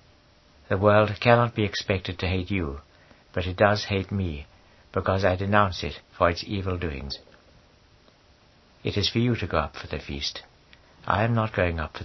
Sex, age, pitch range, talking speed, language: male, 60-79, 85-105 Hz, 185 wpm, English